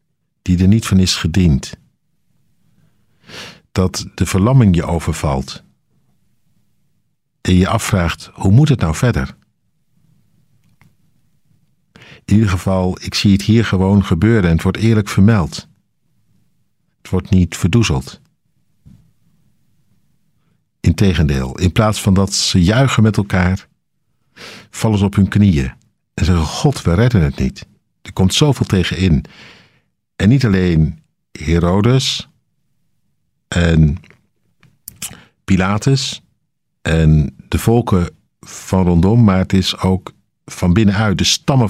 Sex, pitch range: male, 90-110 Hz